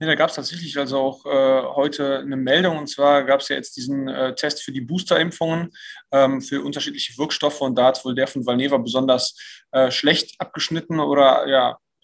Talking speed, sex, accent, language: 205 wpm, male, German, German